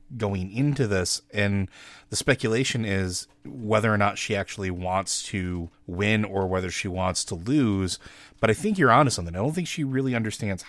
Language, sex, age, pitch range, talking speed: English, male, 30-49, 100-125 Hz, 190 wpm